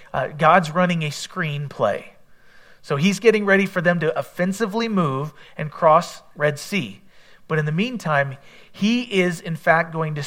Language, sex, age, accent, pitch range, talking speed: English, male, 40-59, American, 155-195 Hz, 165 wpm